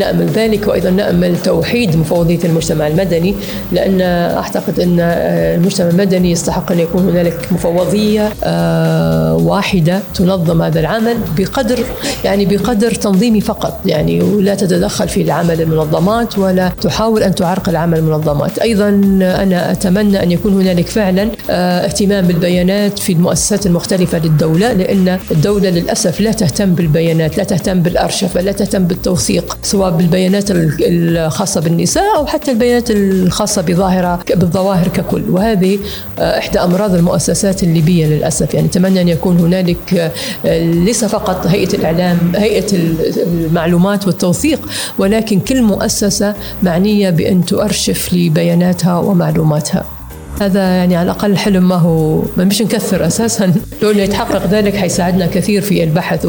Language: Arabic